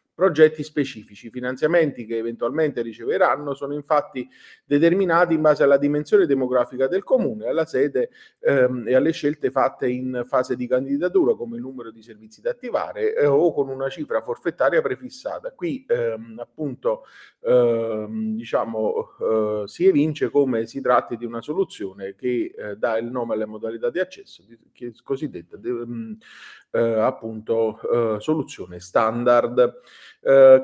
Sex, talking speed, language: male, 145 wpm, Italian